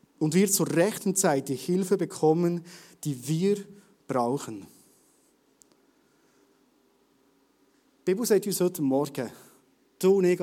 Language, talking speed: German, 115 wpm